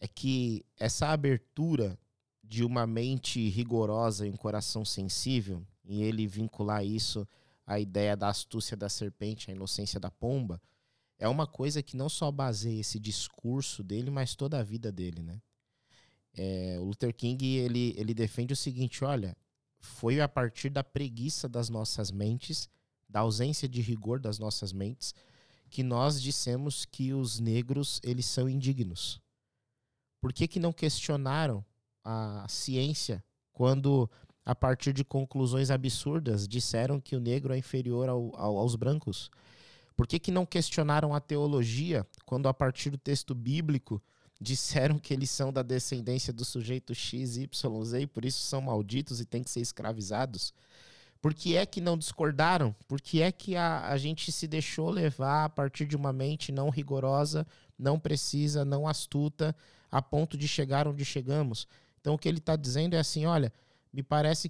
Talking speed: 155 wpm